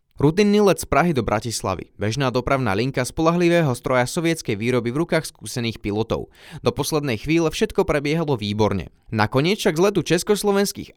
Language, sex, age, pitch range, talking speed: Slovak, male, 20-39, 115-155 Hz, 155 wpm